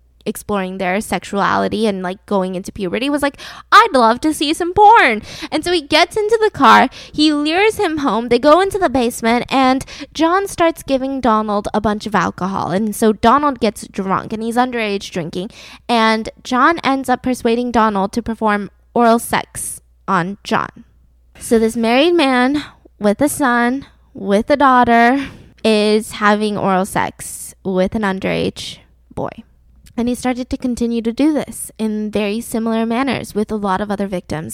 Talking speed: 170 wpm